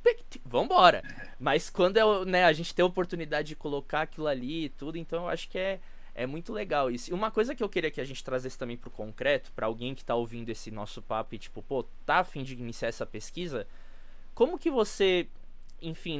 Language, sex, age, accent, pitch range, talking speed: Portuguese, male, 20-39, Brazilian, 125-180 Hz, 215 wpm